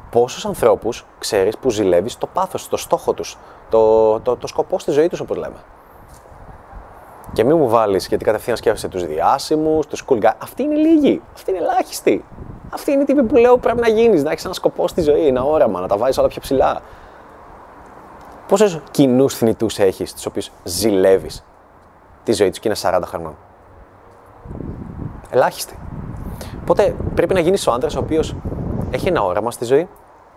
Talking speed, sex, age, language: 170 wpm, male, 20-39, Greek